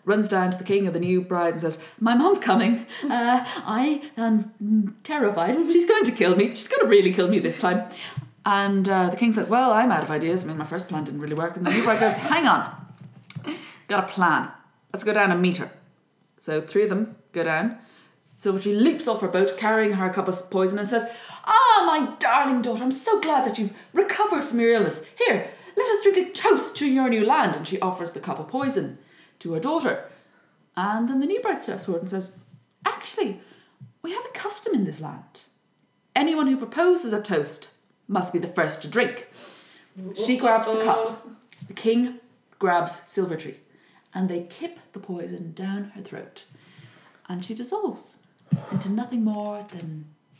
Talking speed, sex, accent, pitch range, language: 200 wpm, female, British, 180-245 Hz, English